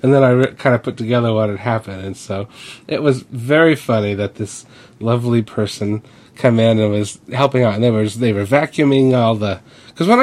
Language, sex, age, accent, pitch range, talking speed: English, male, 30-49, American, 105-125 Hz, 215 wpm